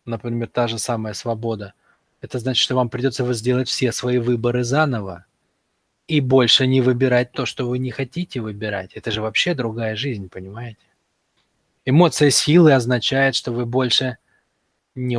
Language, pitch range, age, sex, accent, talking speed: Russian, 110-135 Hz, 20-39, male, native, 155 wpm